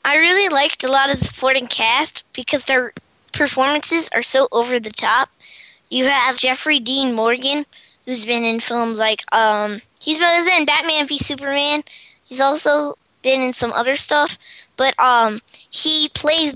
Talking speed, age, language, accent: 165 wpm, 10-29, English, American